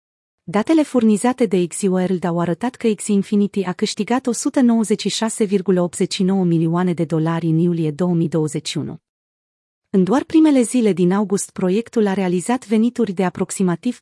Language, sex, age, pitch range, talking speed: Romanian, female, 30-49, 175-220 Hz, 125 wpm